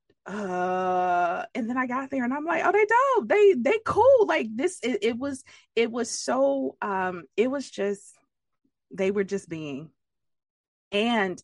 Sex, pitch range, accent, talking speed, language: female, 150-205 Hz, American, 170 wpm, English